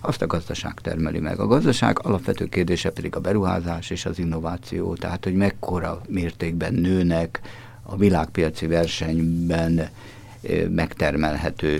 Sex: male